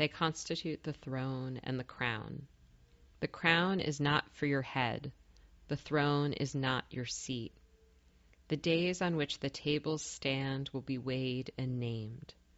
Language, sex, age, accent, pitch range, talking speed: English, female, 30-49, American, 115-145 Hz, 155 wpm